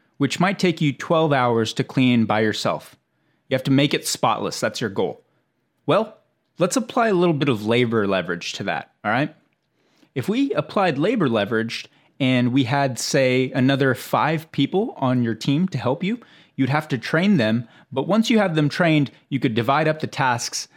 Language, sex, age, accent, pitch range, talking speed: English, male, 30-49, American, 120-150 Hz, 195 wpm